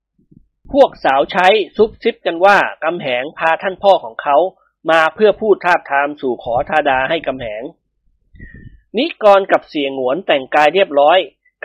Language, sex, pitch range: Thai, male, 140-195 Hz